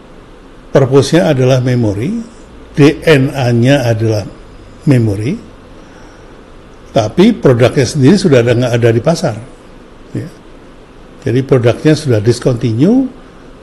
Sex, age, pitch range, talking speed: male, 60-79, 120-160 Hz, 90 wpm